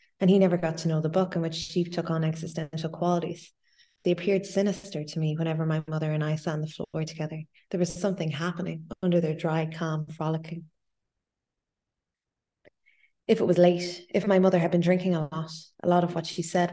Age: 20-39